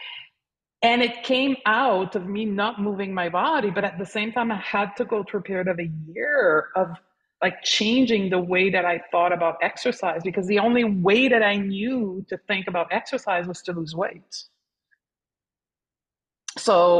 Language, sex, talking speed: English, female, 180 wpm